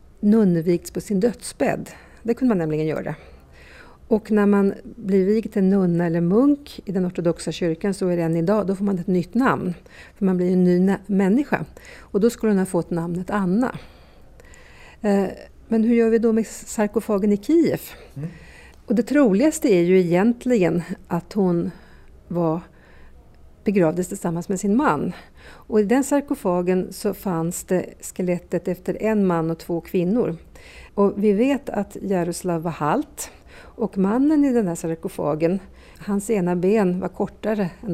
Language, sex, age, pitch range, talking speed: Swedish, female, 50-69, 175-220 Hz, 165 wpm